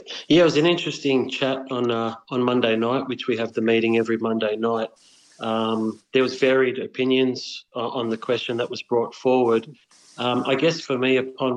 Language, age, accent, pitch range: English, 30-49, Australian, 115-125 Hz